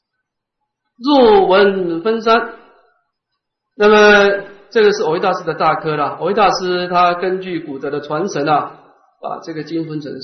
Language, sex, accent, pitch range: Chinese, male, native, 160-270 Hz